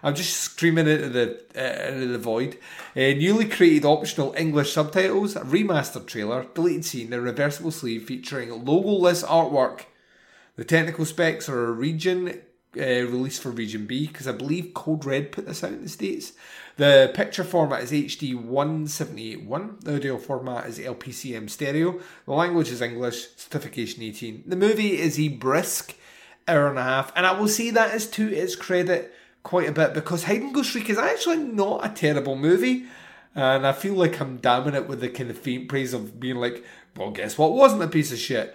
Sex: male